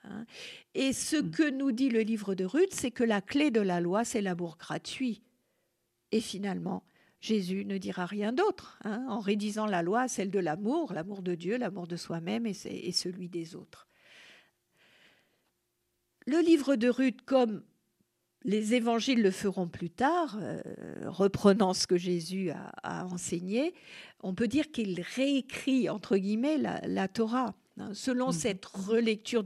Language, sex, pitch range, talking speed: French, female, 185-240 Hz, 155 wpm